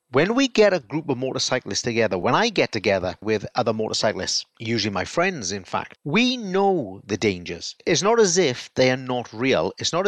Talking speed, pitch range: 205 wpm, 120-155 Hz